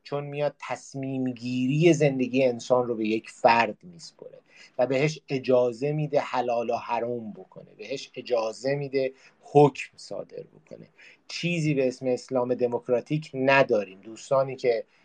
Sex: male